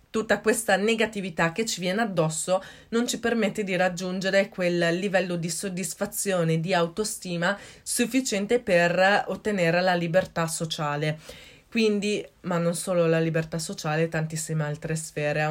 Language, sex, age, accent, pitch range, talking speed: Italian, female, 20-39, native, 170-215 Hz, 135 wpm